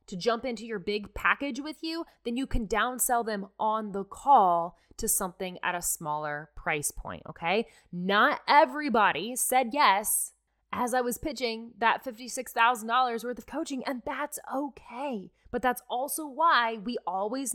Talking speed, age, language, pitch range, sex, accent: 165 wpm, 20-39, English, 185-255 Hz, female, American